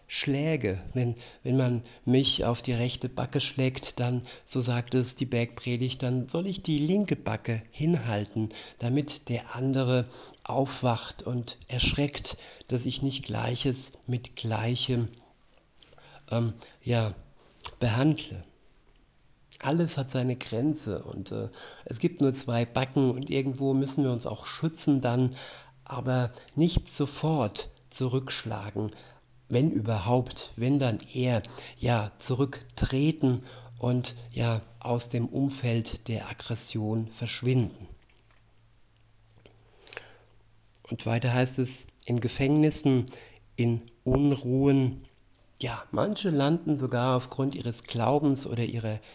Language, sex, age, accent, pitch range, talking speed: German, male, 60-79, German, 115-135 Hz, 110 wpm